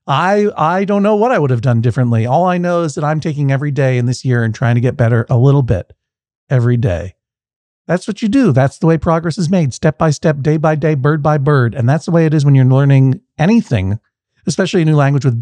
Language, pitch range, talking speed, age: English, 130-180 Hz, 255 wpm, 50-69